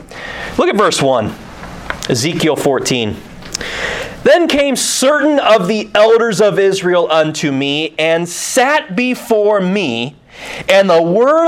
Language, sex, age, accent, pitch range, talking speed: English, male, 30-49, American, 160-250 Hz, 120 wpm